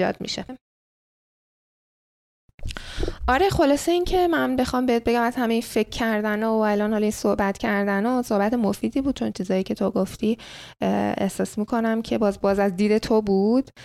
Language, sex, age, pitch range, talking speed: Persian, female, 10-29, 185-220 Hz, 145 wpm